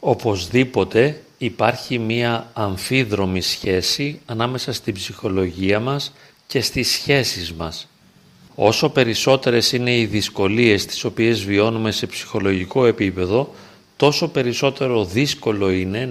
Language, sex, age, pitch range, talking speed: Greek, male, 40-59, 105-135 Hz, 105 wpm